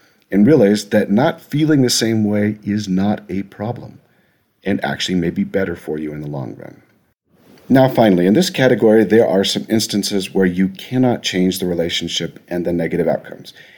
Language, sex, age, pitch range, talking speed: English, male, 50-69, 95-125 Hz, 185 wpm